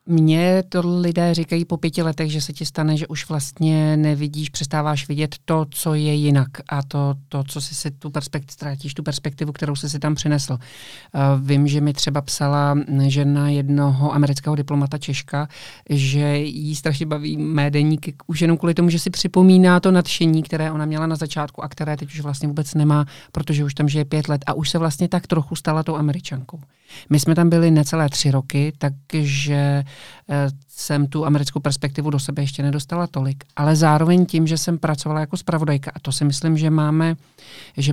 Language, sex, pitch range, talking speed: Czech, male, 145-160 Hz, 190 wpm